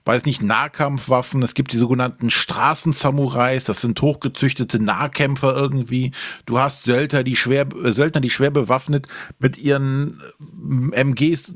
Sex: male